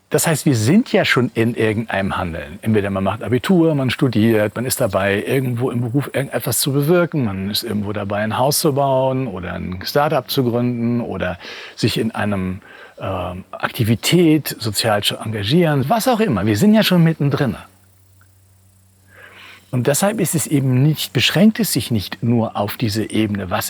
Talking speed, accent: 170 wpm, German